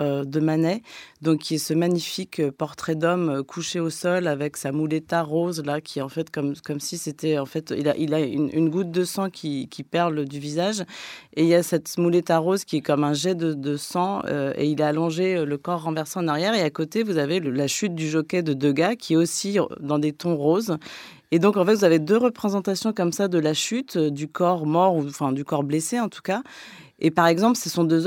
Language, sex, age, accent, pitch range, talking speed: French, female, 30-49, French, 150-185 Hz, 245 wpm